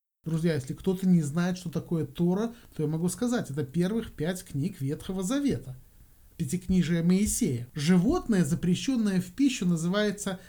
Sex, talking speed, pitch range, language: male, 145 wpm, 155-220 Hz, Russian